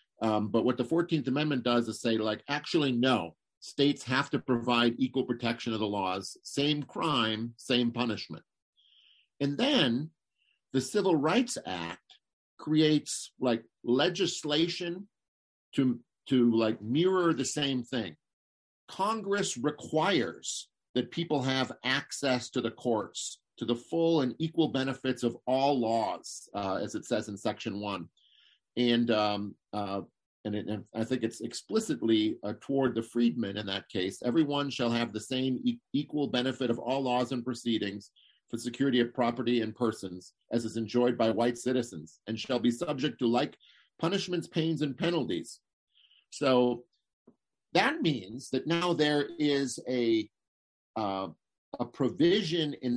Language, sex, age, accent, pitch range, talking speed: English, male, 50-69, American, 110-140 Hz, 145 wpm